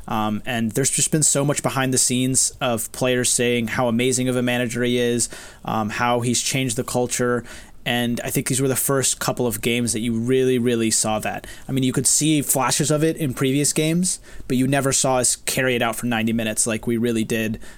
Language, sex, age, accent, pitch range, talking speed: English, male, 20-39, American, 115-130 Hz, 230 wpm